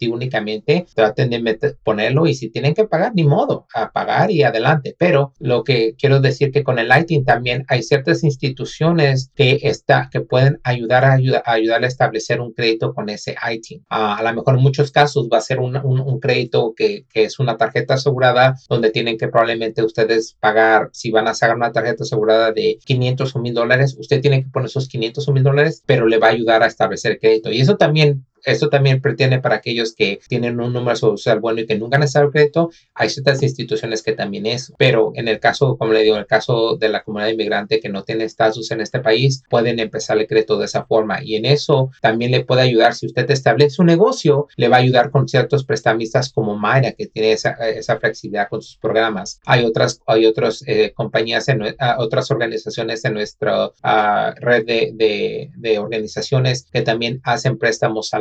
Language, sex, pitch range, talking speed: Spanish, male, 115-145 Hz, 210 wpm